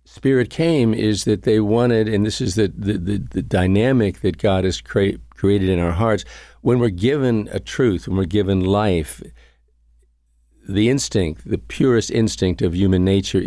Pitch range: 85-110 Hz